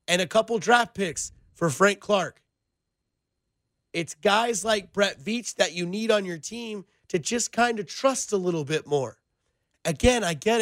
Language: English